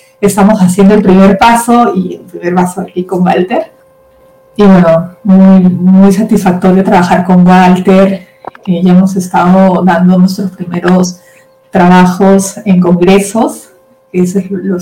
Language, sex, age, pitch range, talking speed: English, female, 30-49, 180-205 Hz, 135 wpm